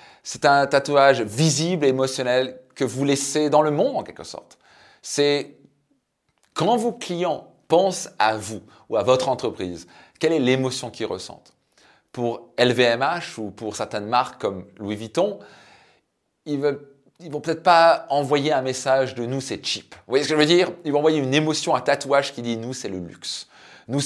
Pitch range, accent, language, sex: 120-150 Hz, French, French, male